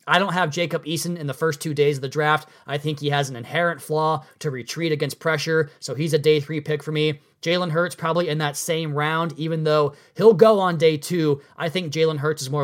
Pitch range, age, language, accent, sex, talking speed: 145-170 Hz, 30-49, English, American, male, 245 wpm